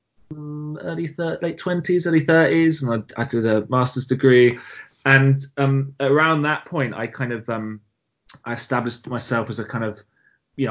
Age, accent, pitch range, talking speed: 20-39, British, 110-135 Hz, 175 wpm